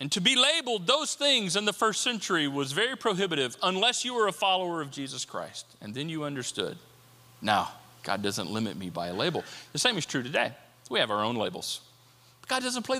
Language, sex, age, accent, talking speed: English, male, 40-59, American, 215 wpm